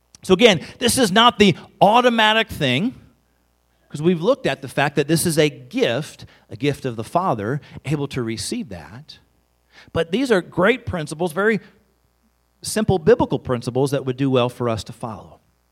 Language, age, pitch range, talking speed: English, 40-59, 125-205 Hz, 170 wpm